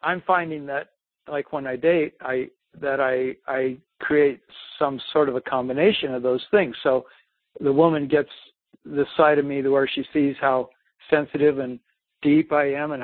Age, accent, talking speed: 60-79, American, 180 wpm